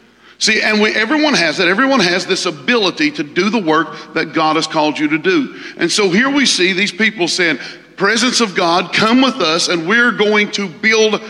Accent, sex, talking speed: American, male, 210 wpm